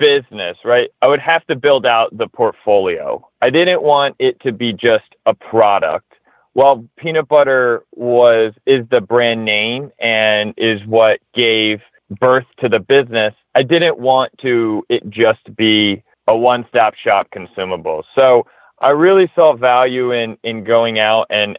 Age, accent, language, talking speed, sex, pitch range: 30-49, American, English, 155 wpm, male, 110-140 Hz